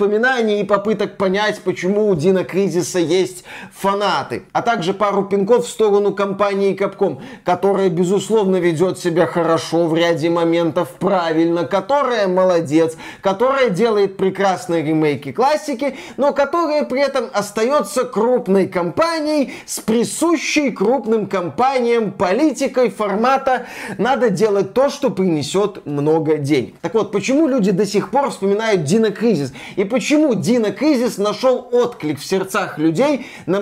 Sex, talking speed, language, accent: male, 130 wpm, Russian, native